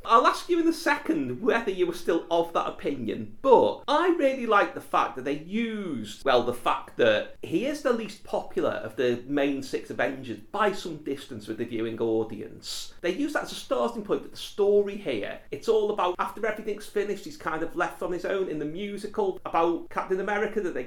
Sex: male